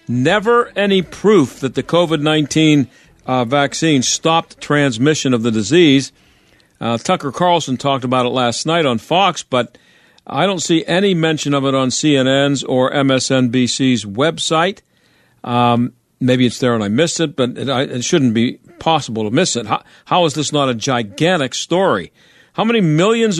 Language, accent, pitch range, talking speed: English, American, 130-175 Hz, 160 wpm